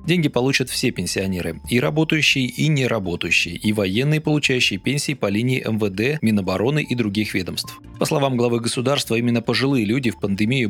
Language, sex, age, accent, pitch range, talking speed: Russian, male, 30-49, native, 105-135 Hz, 170 wpm